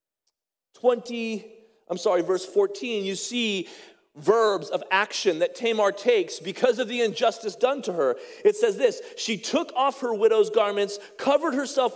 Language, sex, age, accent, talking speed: English, male, 40-59, American, 155 wpm